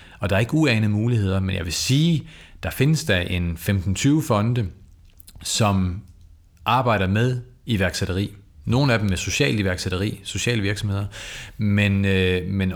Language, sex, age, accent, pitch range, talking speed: Danish, male, 40-59, native, 90-110 Hz, 145 wpm